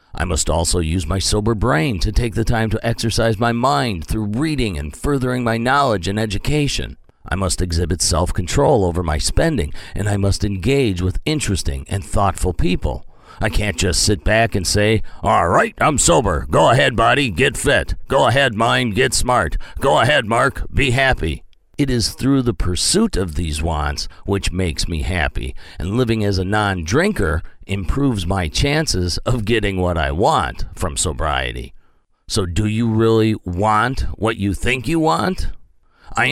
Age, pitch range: 50-69, 90-120 Hz